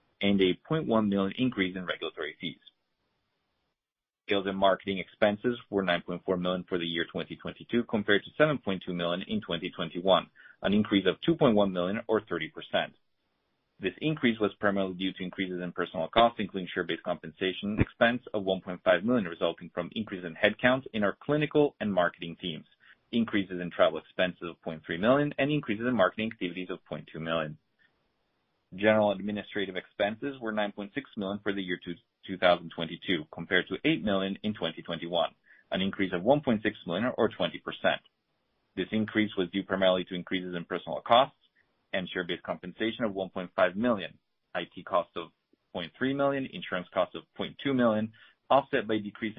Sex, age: male, 30-49